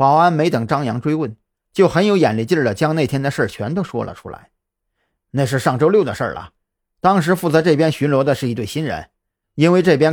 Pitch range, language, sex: 105-155 Hz, Chinese, male